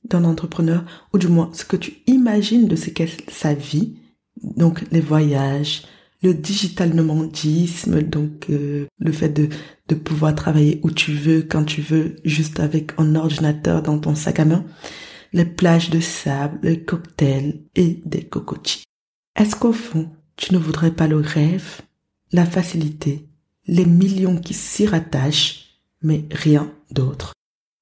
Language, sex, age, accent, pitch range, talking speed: French, female, 20-39, French, 155-180 Hz, 155 wpm